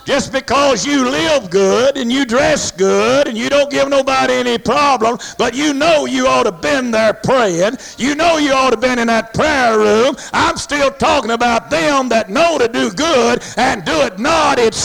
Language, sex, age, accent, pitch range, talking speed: English, male, 60-79, American, 235-295 Hz, 200 wpm